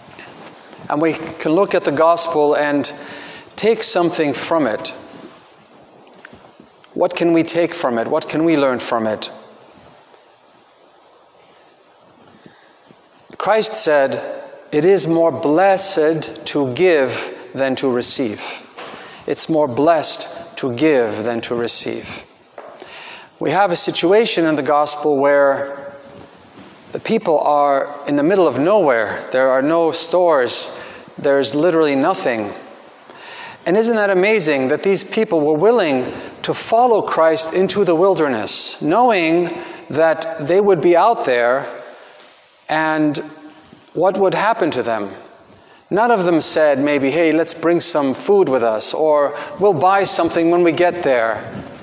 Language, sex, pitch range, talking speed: English, male, 145-180 Hz, 130 wpm